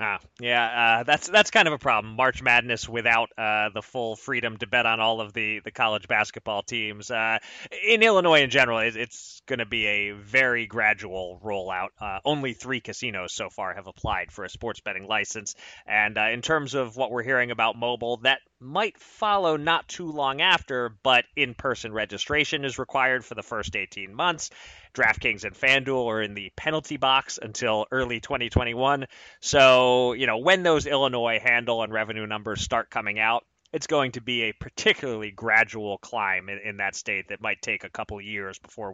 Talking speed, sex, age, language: 190 wpm, male, 30-49, English